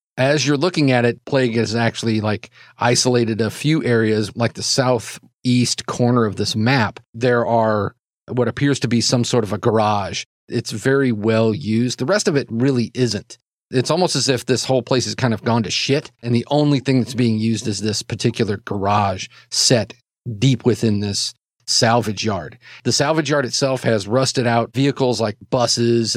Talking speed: 185 wpm